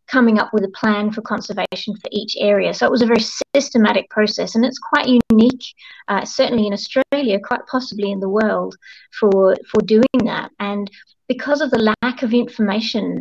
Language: English